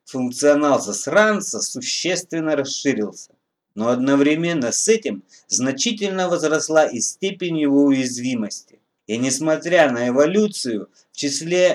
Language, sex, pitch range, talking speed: Russian, male, 130-205 Hz, 100 wpm